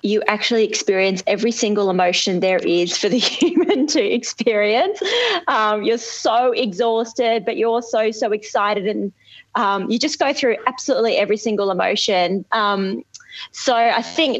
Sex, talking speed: female, 150 wpm